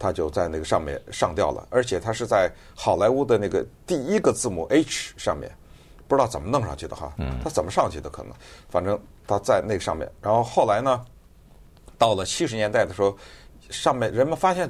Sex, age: male, 50-69